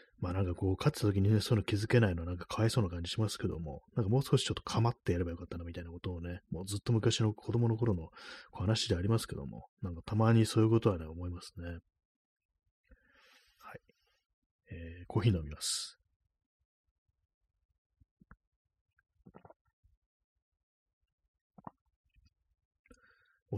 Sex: male